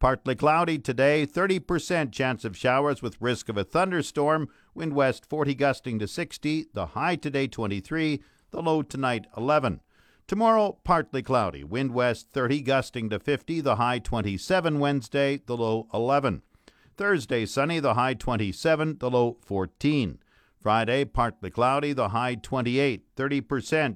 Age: 50-69